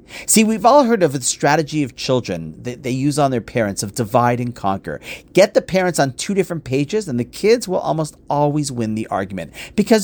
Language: English